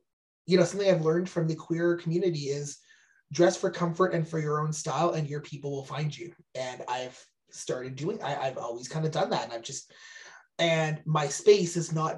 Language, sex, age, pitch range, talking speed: English, male, 30-49, 140-175 Hz, 210 wpm